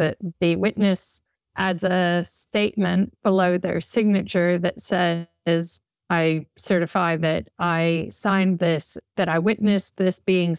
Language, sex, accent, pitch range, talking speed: English, female, American, 165-195 Hz, 125 wpm